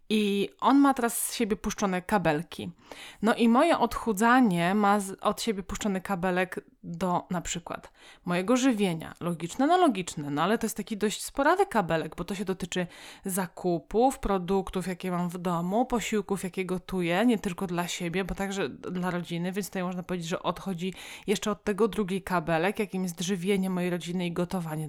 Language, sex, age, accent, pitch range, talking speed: Polish, female, 20-39, native, 180-215 Hz, 175 wpm